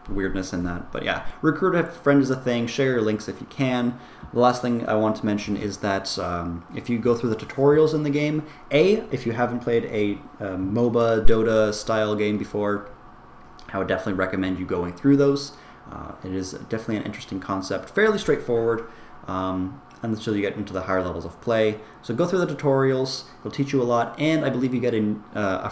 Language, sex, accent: English, male, American